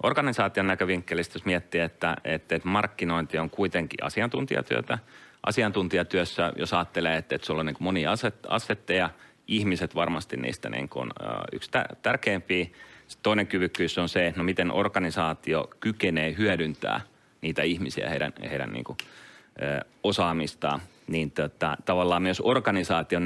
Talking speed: 130 wpm